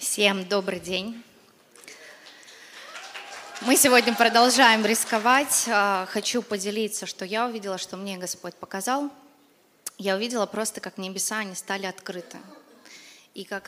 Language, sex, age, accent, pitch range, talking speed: Russian, female, 20-39, native, 205-265 Hz, 115 wpm